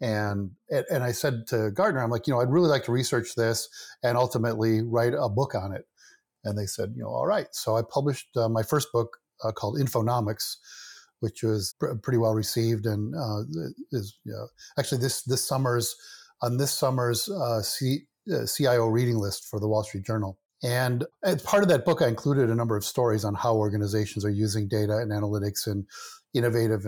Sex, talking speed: male, 205 wpm